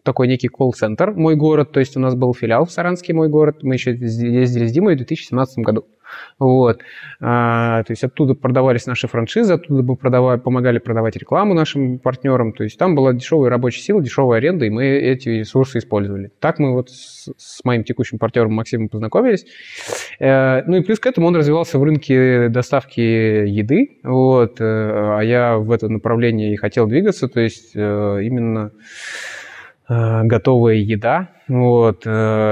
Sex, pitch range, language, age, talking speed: male, 110-130 Hz, Russian, 20-39, 165 wpm